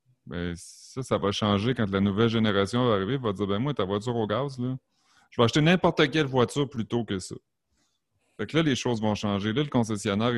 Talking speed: 230 wpm